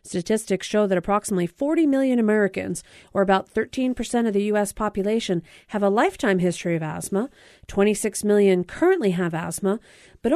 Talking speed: 150 wpm